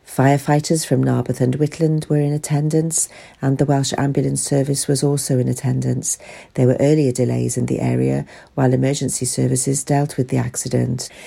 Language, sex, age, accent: English, female, 50-69, British